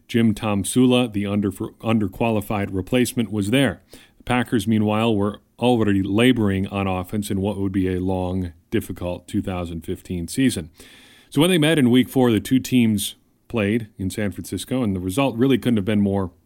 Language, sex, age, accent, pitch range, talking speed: English, male, 40-59, American, 95-115 Hz, 170 wpm